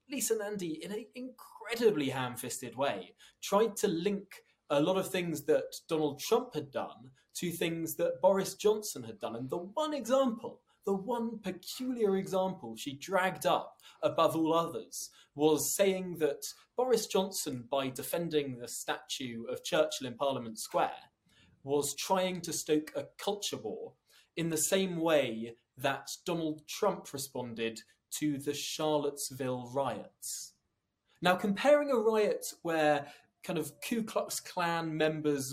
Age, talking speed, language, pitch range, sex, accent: 20-39, 140 wpm, English, 145-195 Hz, male, British